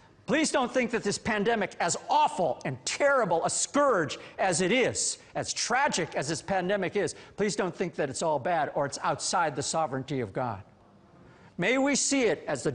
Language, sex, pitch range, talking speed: English, male, 125-210 Hz, 195 wpm